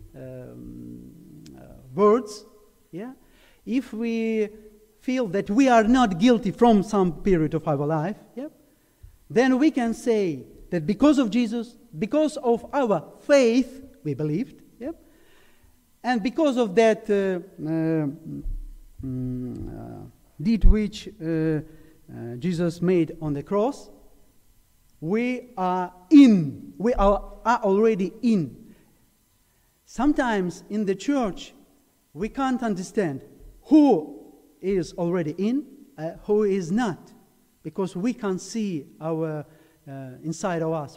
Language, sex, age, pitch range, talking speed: English, male, 50-69, 160-235 Hz, 120 wpm